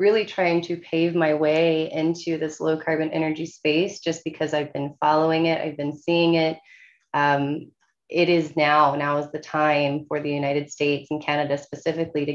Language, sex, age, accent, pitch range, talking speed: English, female, 20-39, American, 160-190 Hz, 185 wpm